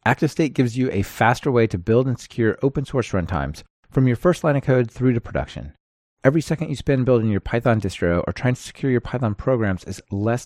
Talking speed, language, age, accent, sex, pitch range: 225 wpm, English, 30-49, American, male, 95-130 Hz